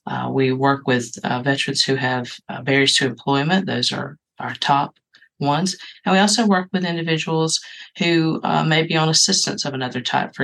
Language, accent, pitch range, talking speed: English, American, 135-160 Hz, 190 wpm